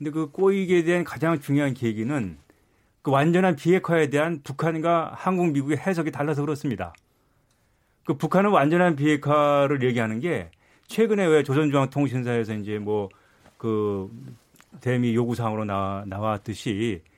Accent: native